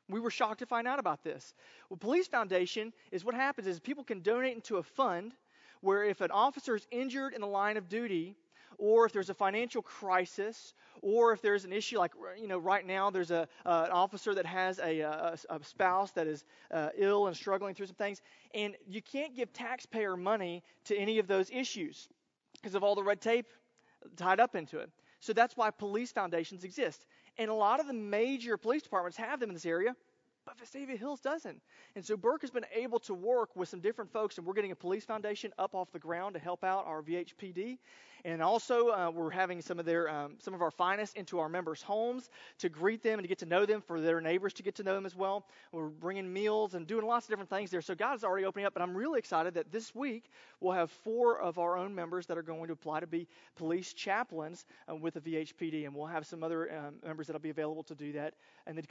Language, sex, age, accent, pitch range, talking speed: English, male, 30-49, American, 175-225 Hz, 240 wpm